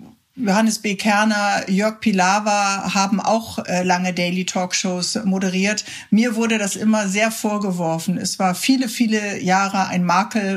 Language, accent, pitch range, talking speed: German, German, 185-220 Hz, 140 wpm